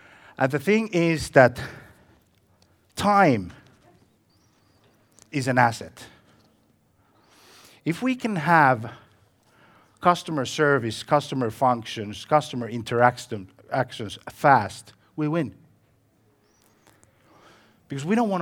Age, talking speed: 50-69, 85 wpm